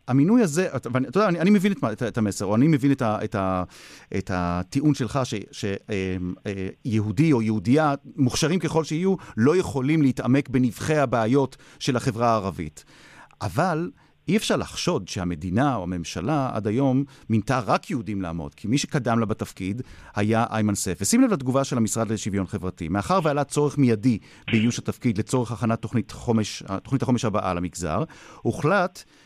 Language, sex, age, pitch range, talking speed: Hebrew, male, 40-59, 110-155 Hz, 165 wpm